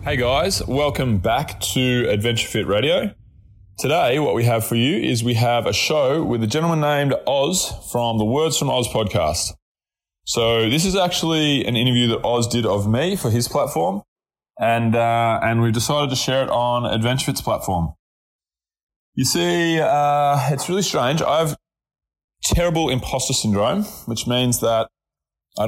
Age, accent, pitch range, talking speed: 20-39, Australian, 105-135 Hz, 165 wpm